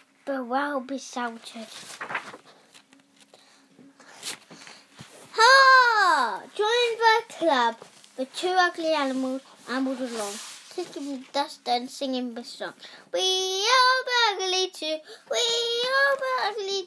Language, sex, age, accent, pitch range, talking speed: English, female, 10-29, British, 275-365 Hz, 95 wpm